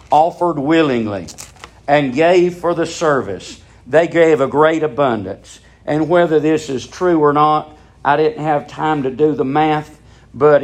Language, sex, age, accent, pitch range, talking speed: English, male, 50-69, American, 115-165 Hz, 160 wpm